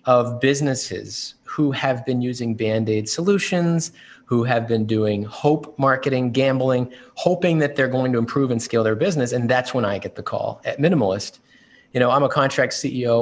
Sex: male